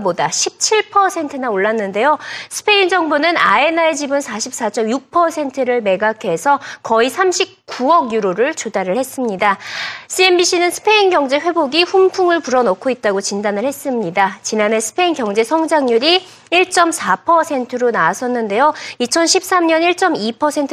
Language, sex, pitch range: Korean, female, 225-335 Hz